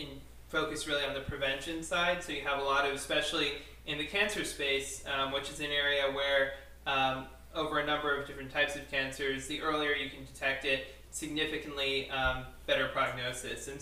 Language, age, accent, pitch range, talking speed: English, 20-39, American, 135-150 Hz, 185 wpm